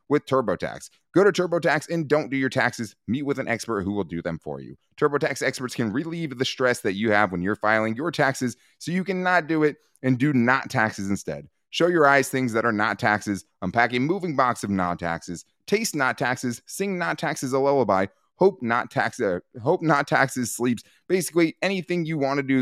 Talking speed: 215 wpm